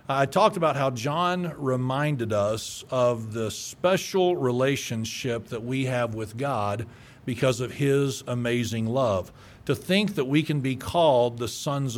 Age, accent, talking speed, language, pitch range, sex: 50-69, American, 150 wpm, English, 125-155 Hz, male